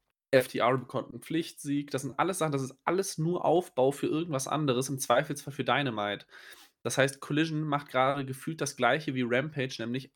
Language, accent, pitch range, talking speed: German, German, 120-145 Hz, 185 wpm